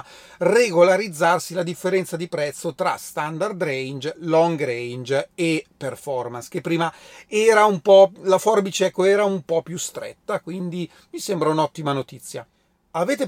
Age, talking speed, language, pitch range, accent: 30-49, 135 wpm, Italian, 150-205 Hz, native